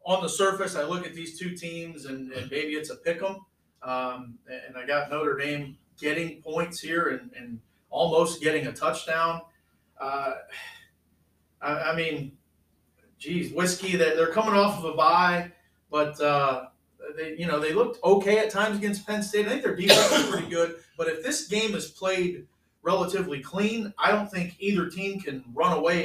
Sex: male